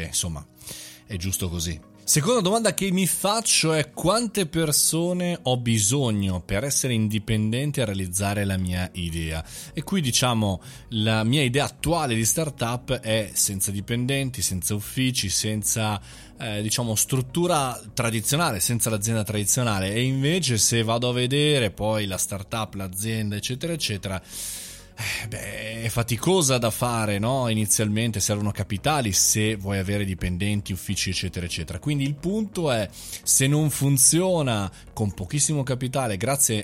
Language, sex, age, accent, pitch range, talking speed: Italian, male, 20-39, native, 100-145 Hz, 135 wpm